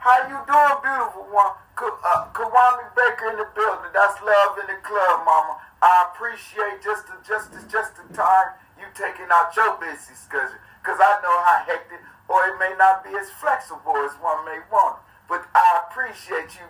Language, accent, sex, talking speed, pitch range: English, American, male, 195 wpm, 185-255 Hz